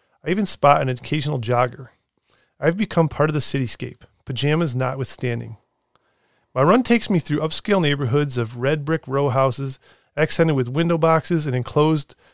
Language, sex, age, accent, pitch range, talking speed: English, male, 30-49, American, 125-150 Hz, 155 wpm